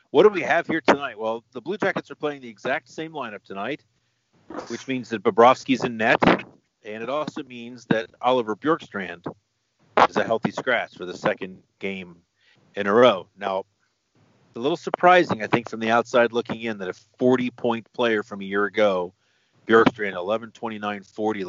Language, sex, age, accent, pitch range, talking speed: English, male, 40-59, American, 100-125 Hz, 175 wpm